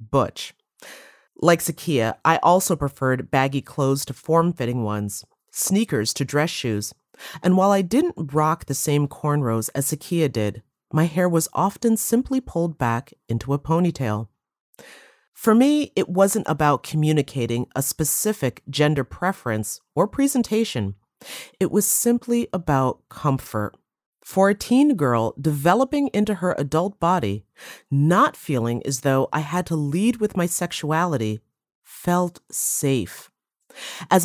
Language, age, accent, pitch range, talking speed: English, 30-49, American, 130-195 Hz, 135 wpm